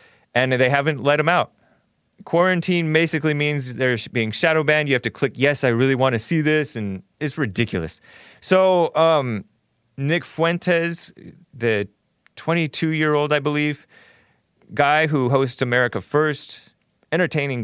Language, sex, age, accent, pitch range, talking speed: English, male, 30-49, American, 115-155 Hz, 145 wpm